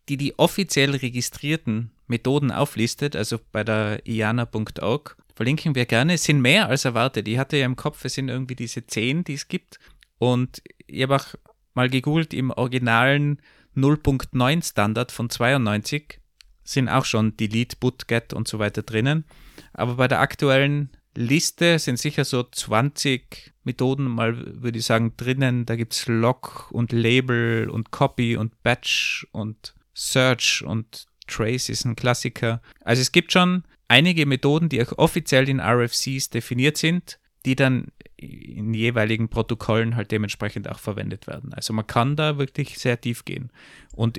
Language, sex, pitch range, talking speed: German, male, 115-140 Hz, 160 wpm